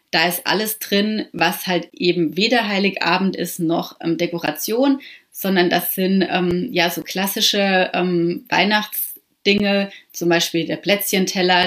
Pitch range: 170-195 Hz